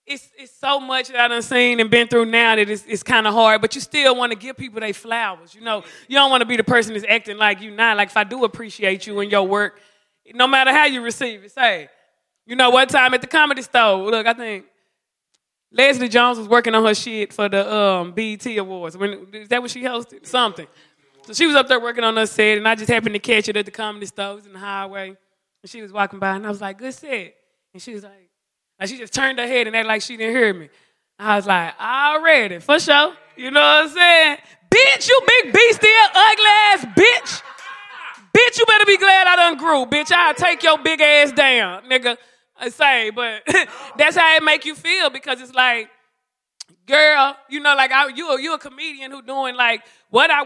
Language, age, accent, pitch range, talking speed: English, 20-39, American, 215-285 Hz, 240 wpm